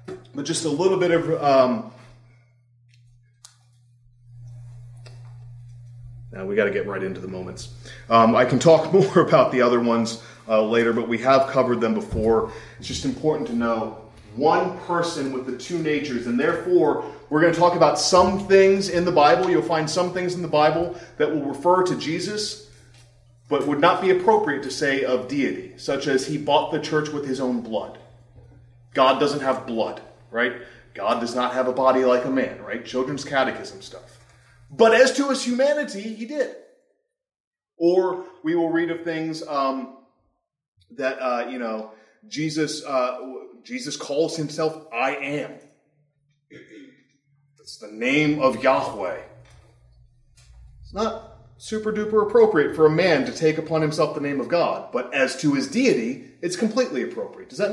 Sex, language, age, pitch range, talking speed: male, English, 30-49, 120-175 Hz, 165 wpm